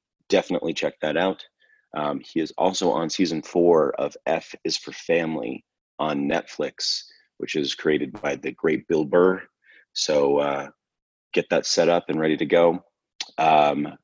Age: 30-49